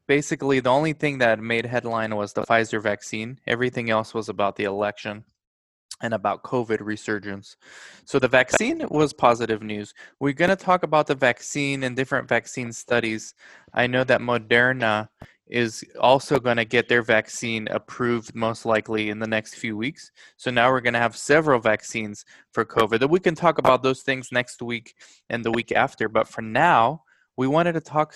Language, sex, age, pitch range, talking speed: English, male, 20-39, 110-135 Hz, 185 wpm